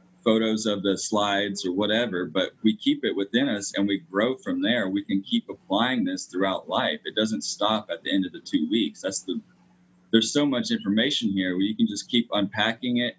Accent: American